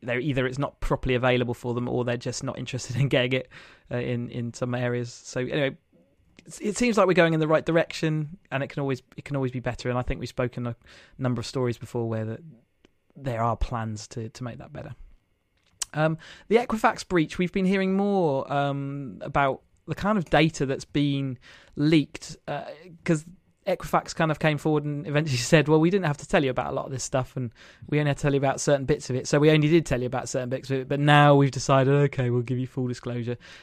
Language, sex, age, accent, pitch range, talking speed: English, male, 20-39, British, 125-155 Hz, 235 wpm